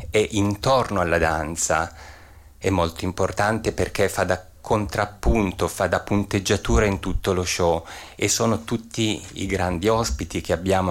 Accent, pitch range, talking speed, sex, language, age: native, 85-100 Hz, 145 wpm, male, Italian, 30-49